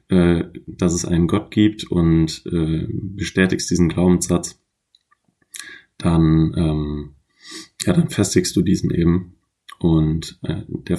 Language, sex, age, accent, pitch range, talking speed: German, male, 30-49, German, 85-90 Hz, 115 wpm